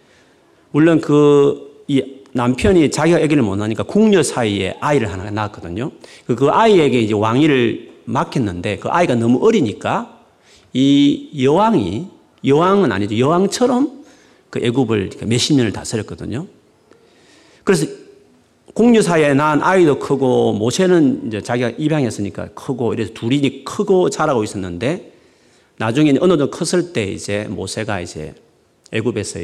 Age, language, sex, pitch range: 40-59, Korean, male, 105-165 Hz